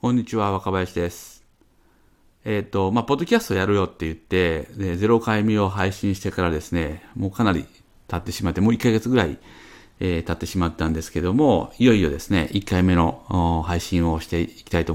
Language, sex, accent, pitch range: Japanese, male, native, 85-110 Hz